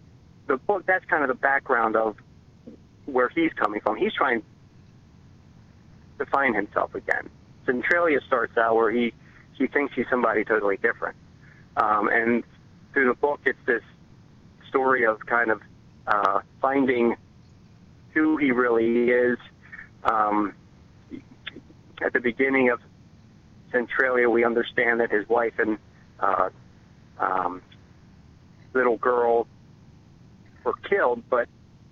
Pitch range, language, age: 115-145 Hz, English, 40-59